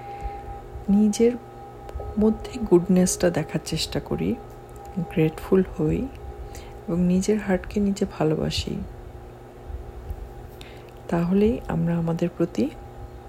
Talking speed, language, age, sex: 50 wpm, Bengali, 50-69, female